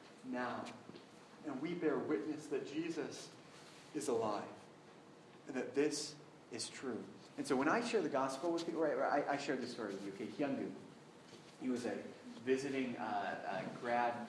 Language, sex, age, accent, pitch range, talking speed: English, male, 30-49, American, 120-135 Hz, 160 wpm